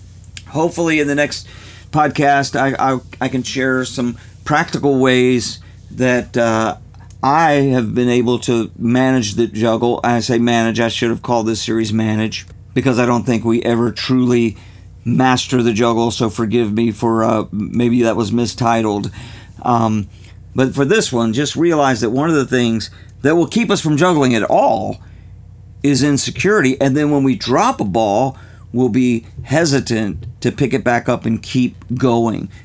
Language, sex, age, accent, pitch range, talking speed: English, male, 50-69, American, 110-130 Hz, 170 wpm